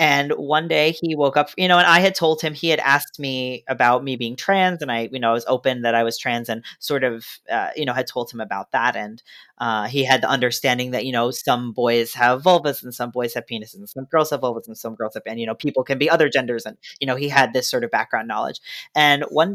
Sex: female